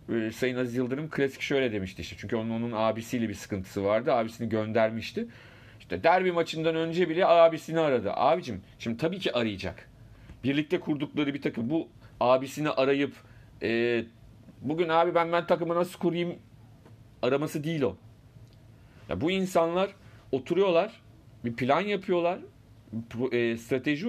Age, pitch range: 40-59, 115-170 Hz